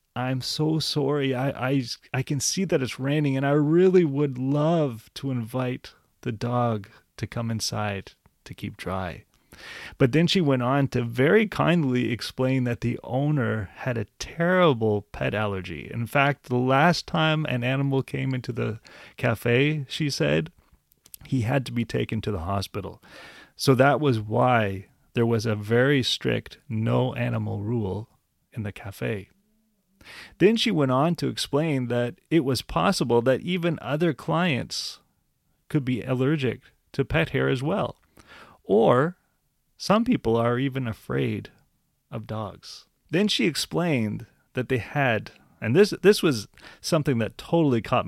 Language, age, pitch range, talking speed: English, 30-49, 115-150 Hz, 155 wpm